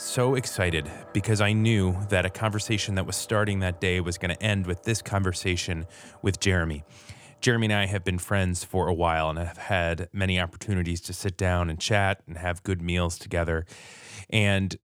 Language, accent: English, American